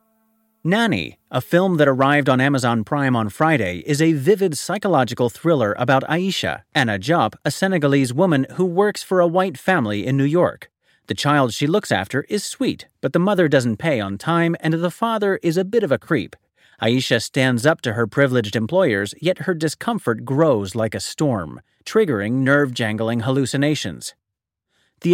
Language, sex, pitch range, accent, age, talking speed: English, male, 120-180 Hz, American, 30-49, 170 wpm